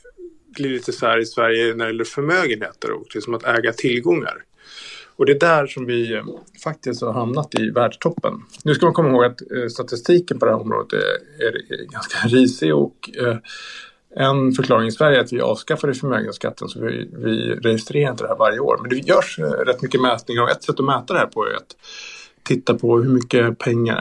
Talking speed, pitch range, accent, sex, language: 195 wpm, 115-155 Hz, Norwegian, male, Swedish